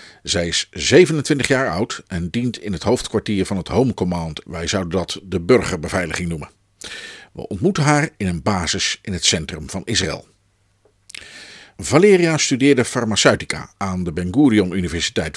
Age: 50-69